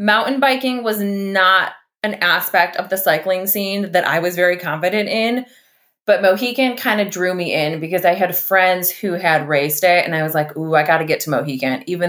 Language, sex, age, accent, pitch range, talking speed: English, female, 20-39, American, 160-210 Hz, 215 wpm